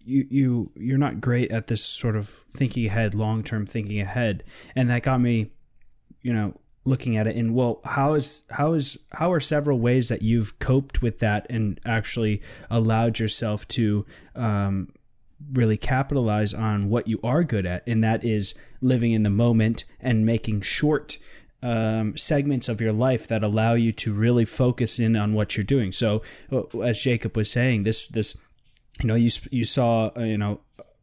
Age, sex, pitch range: 20-39, male, 110-125 Hz